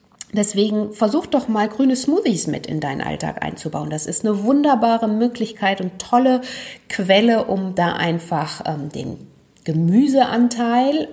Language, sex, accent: German, female, German